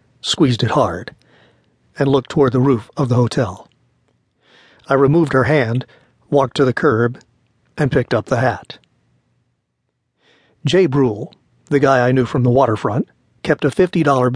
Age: 50-69